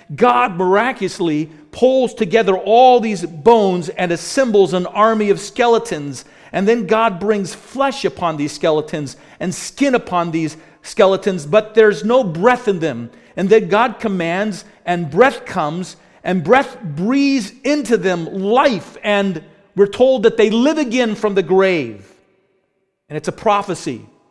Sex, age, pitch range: male, 40-59, 160-215 Hz